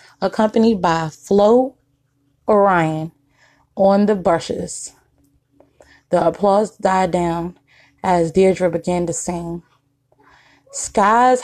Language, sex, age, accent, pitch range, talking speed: English, female, 20-39, American, 165-195 Hz, 90 wpm